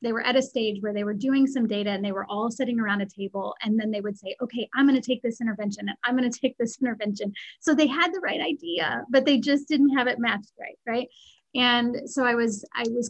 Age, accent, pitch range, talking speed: 30-49, American, 210-255 Hz, 270 wpm